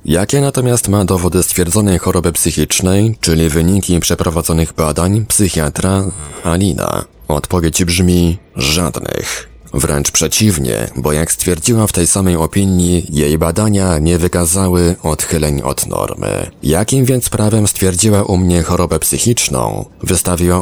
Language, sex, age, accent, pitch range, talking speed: Polish, male, 30-49, native, 85-95 Hz, 120 wpm